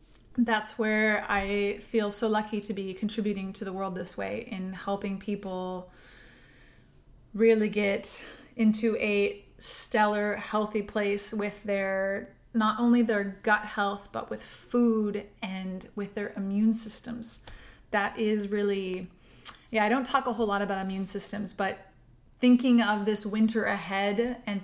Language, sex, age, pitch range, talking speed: English, female, 20-39, 205-240 Hz, 145 wpm